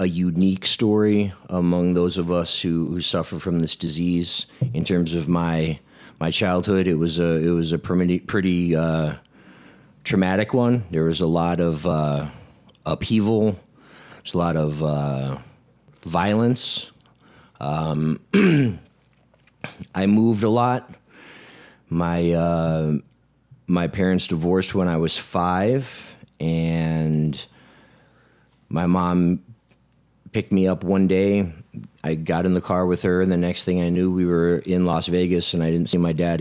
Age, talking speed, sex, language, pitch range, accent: 30-49, 145 wpm, male, English, 80-95 Hz, American